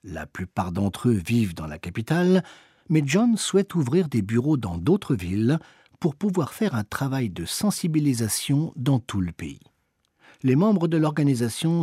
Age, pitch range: 50-69, 100-155 Hz